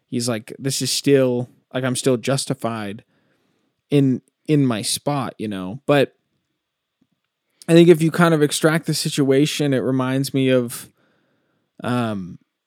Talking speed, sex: 140 wpm, male